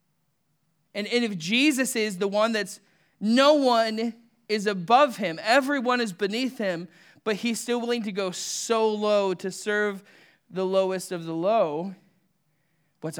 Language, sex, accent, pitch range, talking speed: English, male, American, 160-210 Hz, 145 wpm